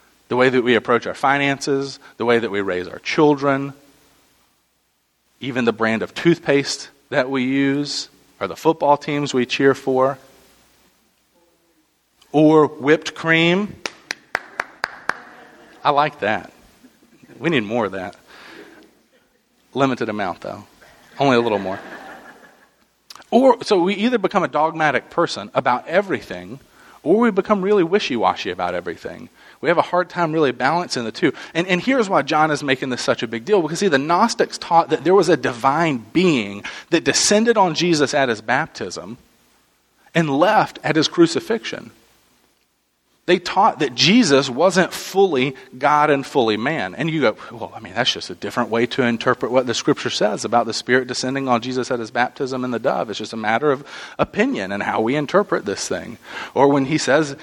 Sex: male